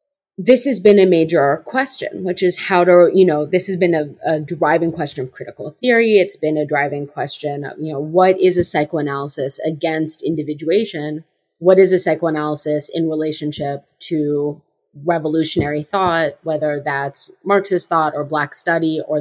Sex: female